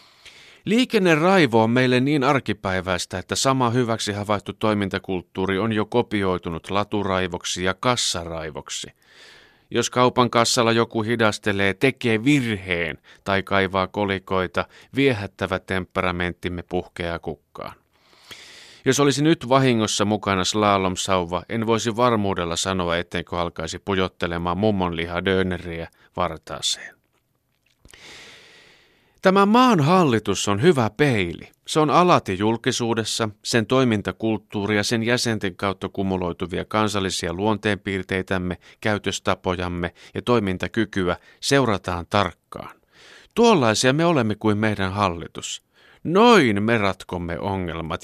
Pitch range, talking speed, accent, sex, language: 95-115 Hz, 100 wpm, native, male, Finnish